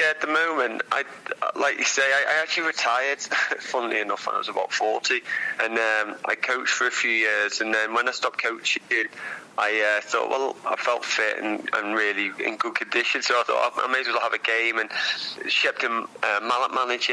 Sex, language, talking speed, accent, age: male, English, 215 wpm, British, 20-39